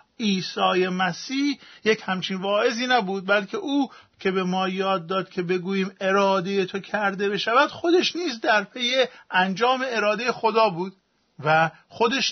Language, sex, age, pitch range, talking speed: Persian, male, 50-69, 180-230 Hz, 140 wpm